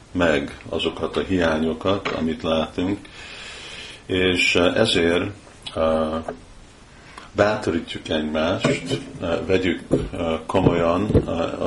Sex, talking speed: male, 80 wpm